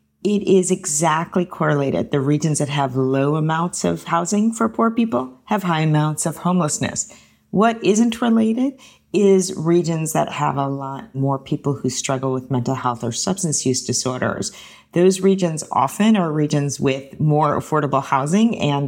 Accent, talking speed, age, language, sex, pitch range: American, 160 wpm, 40-59, English, female, 140-195 Hz